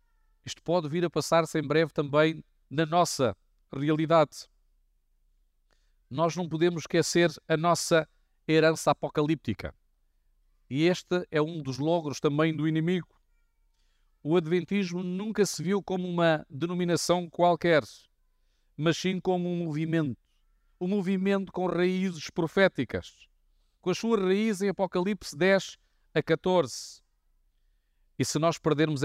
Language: Portuguese